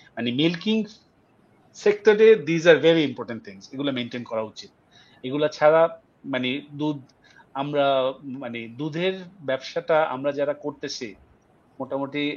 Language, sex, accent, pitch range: Bengali, male, native, 130-160 Hz